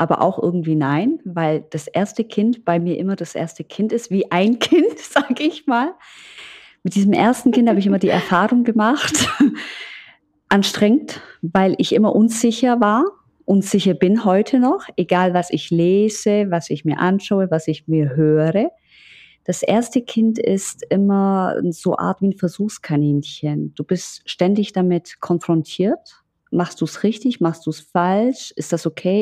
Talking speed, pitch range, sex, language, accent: 160 wpm, 175-225 Hz, female, German, German